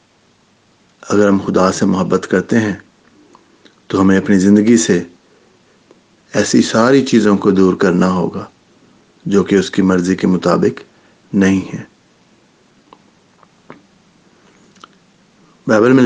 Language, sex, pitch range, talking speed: English, male, 95-115 Hz, 110 wpm